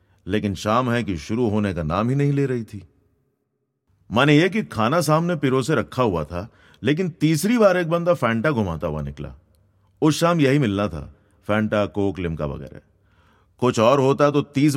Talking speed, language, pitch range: 170 wpm, Hindi, 95-140 Hz